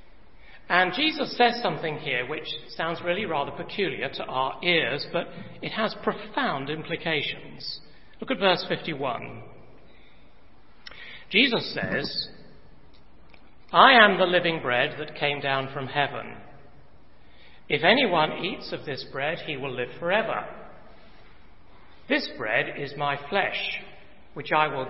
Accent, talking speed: British, 125 wpm